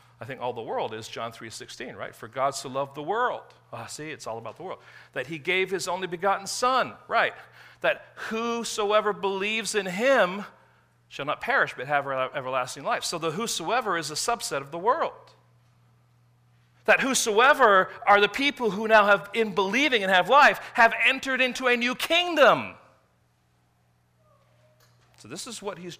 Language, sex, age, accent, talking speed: English, male, 40-59, American, 180 wpm